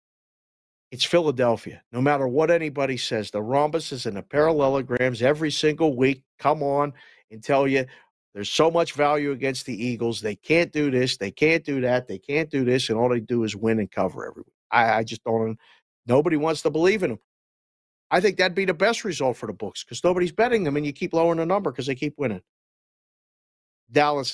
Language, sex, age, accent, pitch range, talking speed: English, male, 50-69, American, 115-155 Hz, 205 wpm